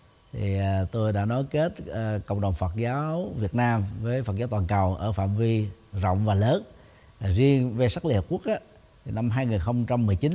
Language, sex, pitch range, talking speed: Vietnamese, male, 100-130 Hz, 195 wpm